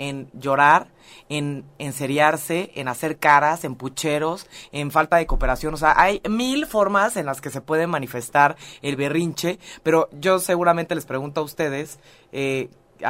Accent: Mexican